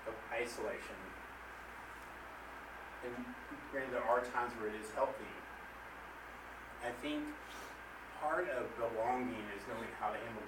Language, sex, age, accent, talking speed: English, male, 30-49, American, 125 wpm